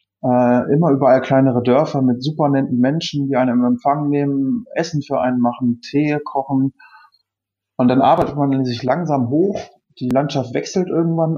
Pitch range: 120-145 Hz